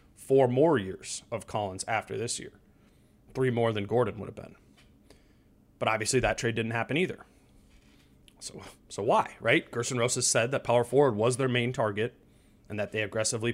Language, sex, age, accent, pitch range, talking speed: English, male, 30-49, American, 105-130 Hz, 175 wpm